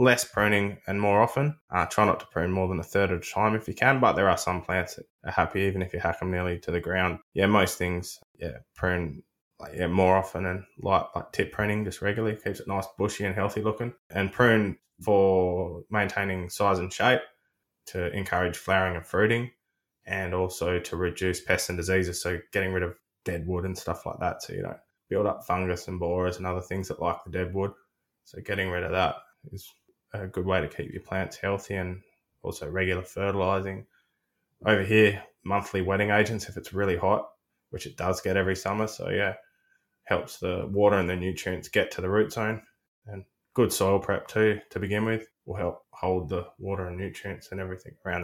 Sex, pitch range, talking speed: male, 90-105 Hz, 210 wpm